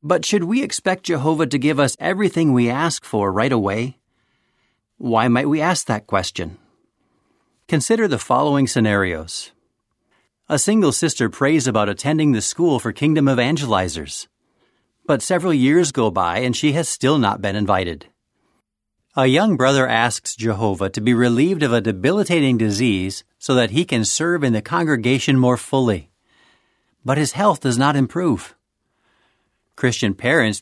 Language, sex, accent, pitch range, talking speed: English, male, American, 105-145 Hz, 150 wpm